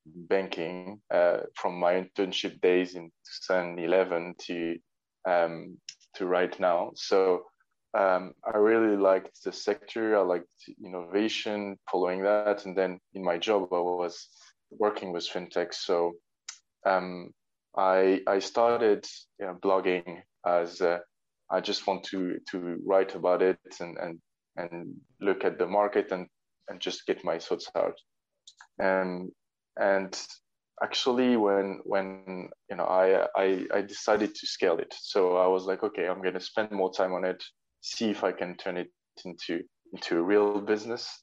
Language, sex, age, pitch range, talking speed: English, male, 20-39, 90-100 Hz, 150 wpm